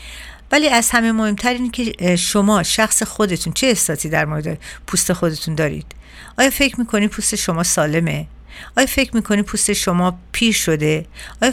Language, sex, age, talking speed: Persian, female, 50-69, 155 wpm